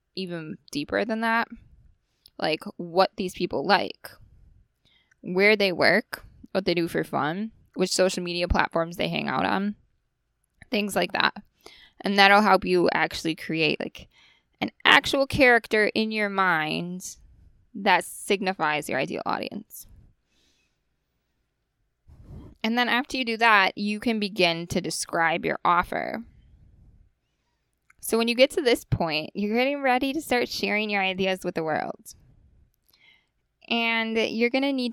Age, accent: 10-29, American